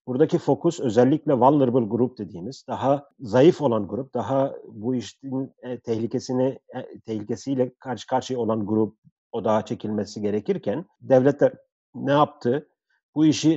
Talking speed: 125 wpm